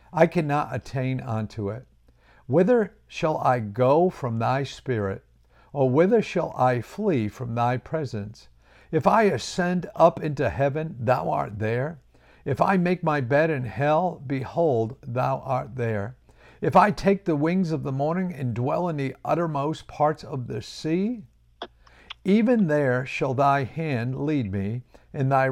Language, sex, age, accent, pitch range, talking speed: English, male, 50-69, American, 115-155 Hz, 155 wpm